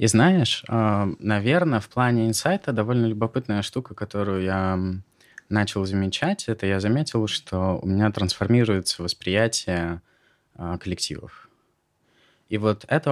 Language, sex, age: Russian, male, 20-39